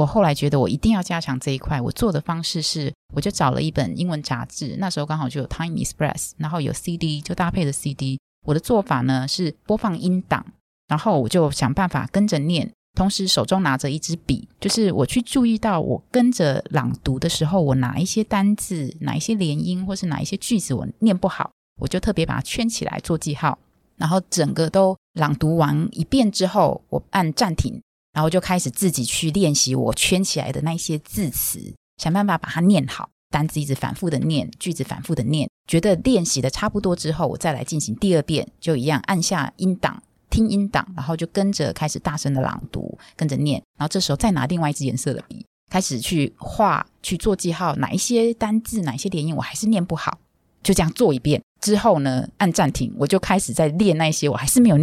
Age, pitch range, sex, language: 20-39, 145-190 Hz, female, Chinese